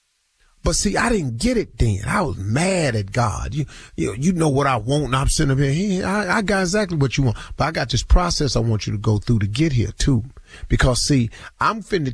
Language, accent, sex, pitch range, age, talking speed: English, American, male, 115-160 Hz, 40-59, 250 wpm